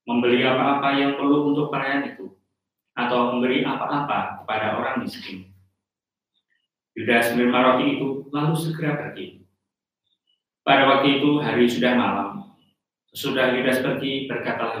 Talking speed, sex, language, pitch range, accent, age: 120 wpm, male, Indonesian, 115-135 Hz, native, 30-49